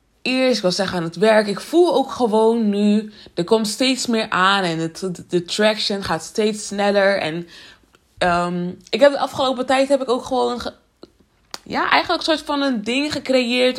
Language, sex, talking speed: Dutch, female, 190 wpm